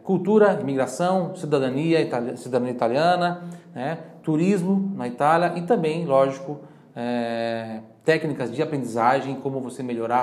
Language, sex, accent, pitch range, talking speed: Italian, male, Brazilian, 120-155 Hz, 100 wpm